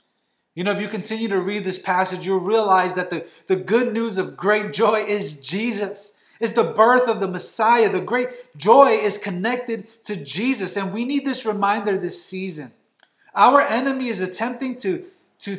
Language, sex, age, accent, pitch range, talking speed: English, male, 30-49, American, 190-240 Hz, 180 wpm